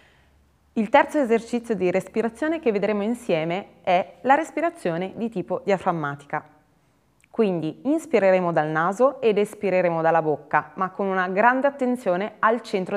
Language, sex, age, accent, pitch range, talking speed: Italian, female, 20-39, native, 170-235 Hz, 135 wpm